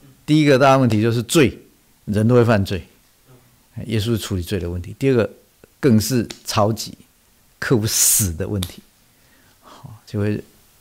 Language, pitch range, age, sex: Chinese, 100-130 Hz, 50-69, male